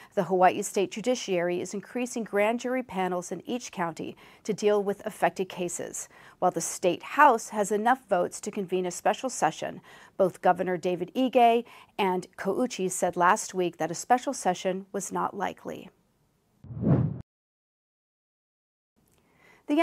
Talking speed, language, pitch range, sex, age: 140 wpm, English, 180-230 Hz, female, 40-59